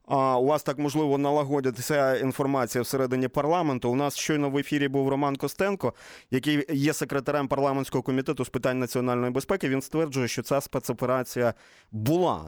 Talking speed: 150 wpm